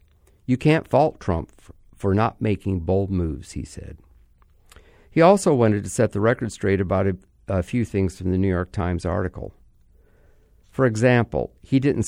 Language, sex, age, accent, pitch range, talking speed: English, male, 50-69, American, 85-115 Hz, 170 wpm